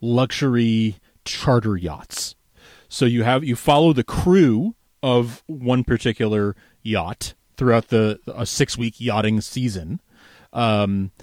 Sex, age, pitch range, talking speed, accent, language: male, 30-49, 100-130 Hz, 110 wpm, American, English